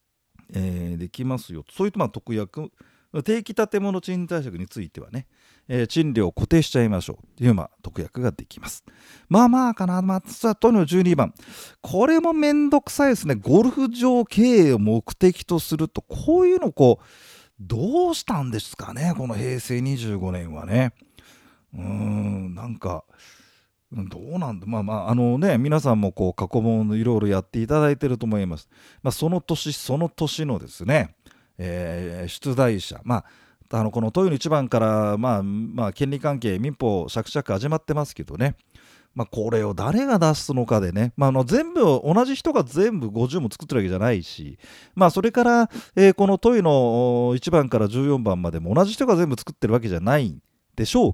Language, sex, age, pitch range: Japanese, male, 40-59, 105-175 Hz